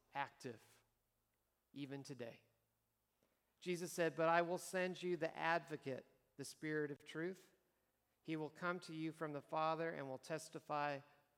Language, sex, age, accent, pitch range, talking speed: English, male, 50-69, American, 115-160 Hz, 140 wpm